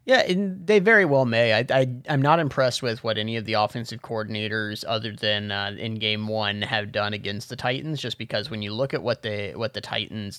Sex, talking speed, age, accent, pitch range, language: male, 235 wpm, 30-49, American, 110-135 Hz, English